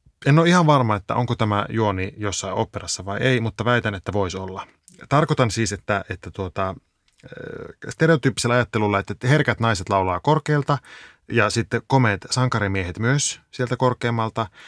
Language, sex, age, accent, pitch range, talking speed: Finnish, male, 30-49, native, 95-120 Hz, 145 wpm